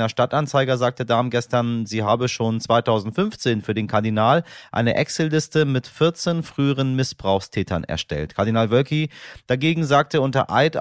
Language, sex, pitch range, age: German, male, 105-130 Hz, 30-49